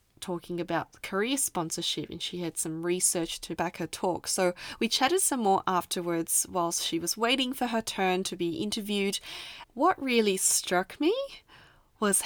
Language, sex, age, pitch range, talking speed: English, female, 20-39, 175-220 Hz, 165 wpm